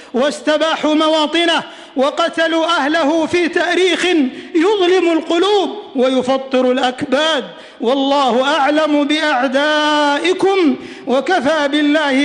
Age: 50-69